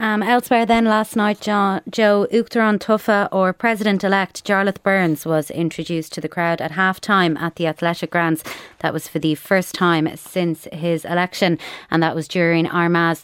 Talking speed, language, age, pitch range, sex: 170 wpm, English, 20-39, 160-190 Hz, female